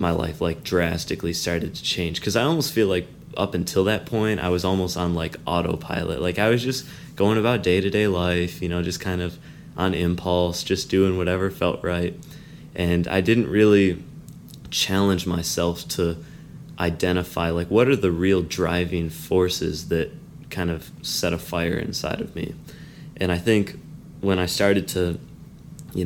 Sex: male